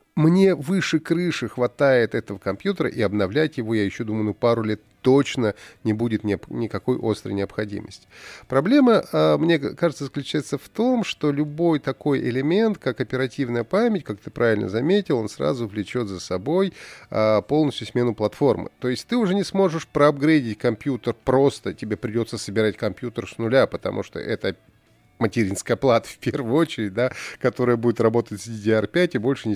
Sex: male